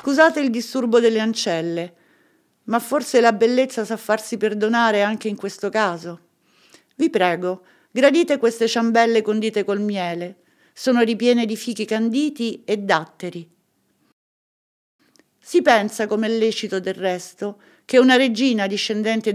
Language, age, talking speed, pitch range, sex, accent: Italian, 50-69, 125 wpm, 205-255 Hz, female, native